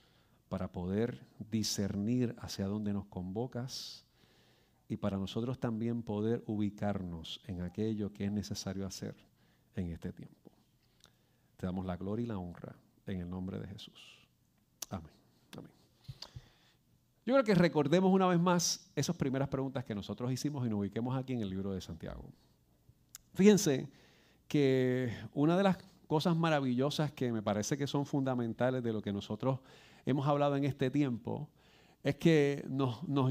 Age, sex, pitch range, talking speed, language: 40-59, male, 110-175 Hz, 150 wpm, Spanish